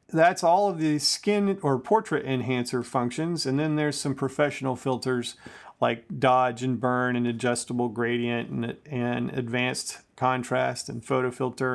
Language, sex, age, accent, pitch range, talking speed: English, male, 40-59, American, 125-150 Hz, 150 wpm